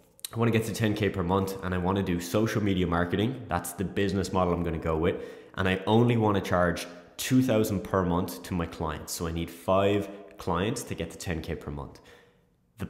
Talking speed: 210 wpm